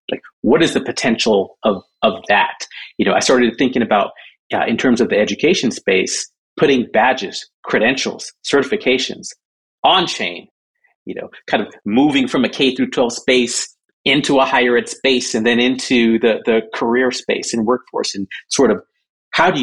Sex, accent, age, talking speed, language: male, American, 40-59, 175 wpm, English